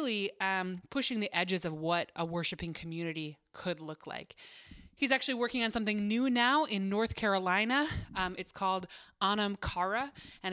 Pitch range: 175-215 Hz